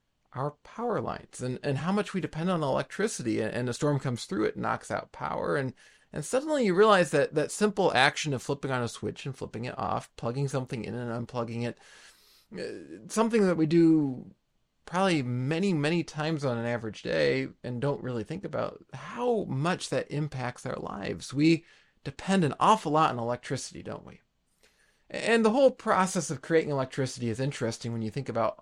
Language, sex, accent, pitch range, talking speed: English, male, American, 120-170 Hz, 190 wpm